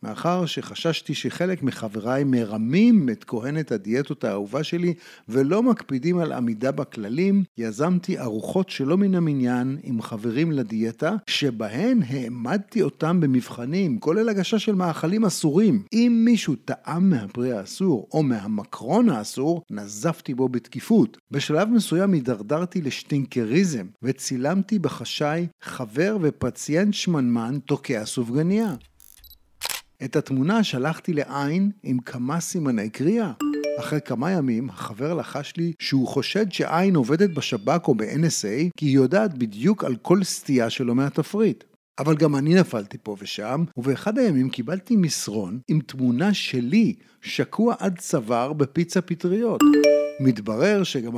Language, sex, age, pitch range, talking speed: Hebrew, male, 50-69, 125-190 Hz, 120 wpm